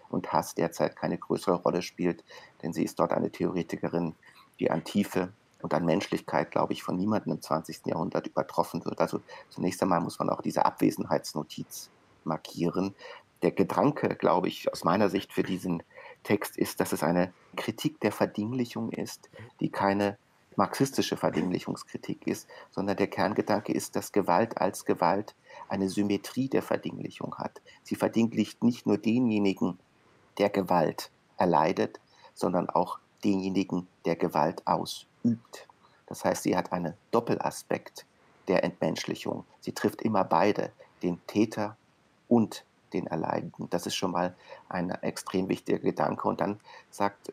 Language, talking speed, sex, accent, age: German, 145 wpm, male, German, 50-69